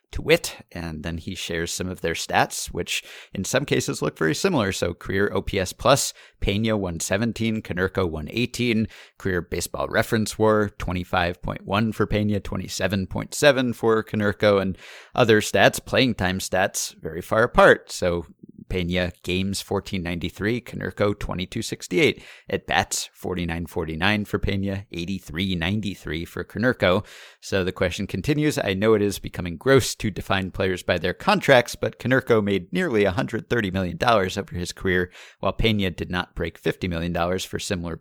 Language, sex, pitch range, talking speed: English, male, 90-110 Hz, 150 wpm